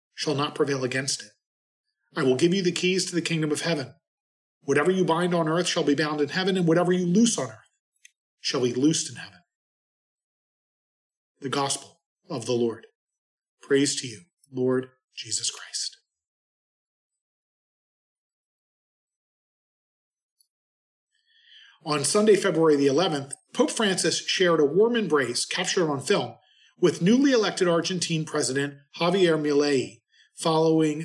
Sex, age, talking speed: male, 40-59, 135 wpm